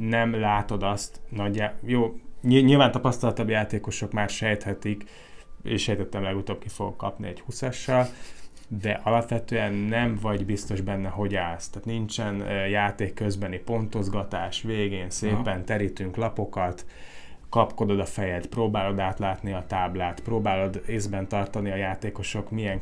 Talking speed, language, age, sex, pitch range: 130 wpm, Hungarian, 30-49, male, 95-110 Hz